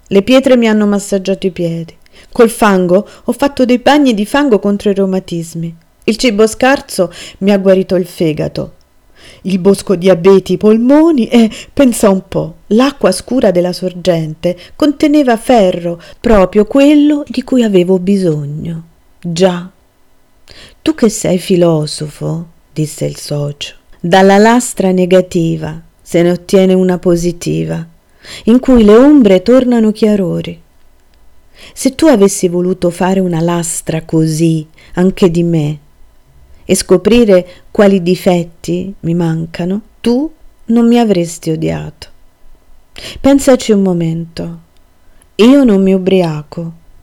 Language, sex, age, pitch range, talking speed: Italian, female, 40-59, 165-225 Hz, 130 wpm